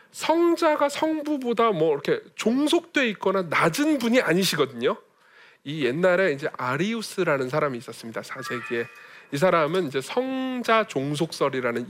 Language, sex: Korean, male